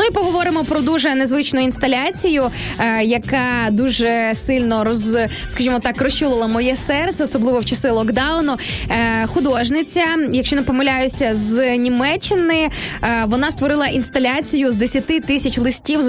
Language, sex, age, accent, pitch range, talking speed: Ukrainian, female, 20-39, native, 240-290 Hz, 125 wpm